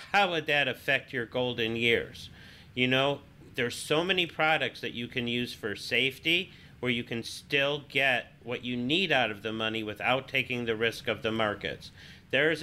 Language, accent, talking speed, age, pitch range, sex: English, American, 185 wpm, 50-69, 120-150 Hz, male